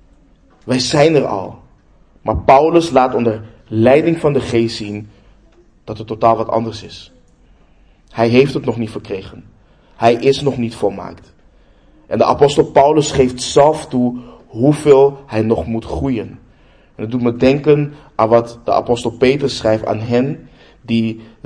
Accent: Dutch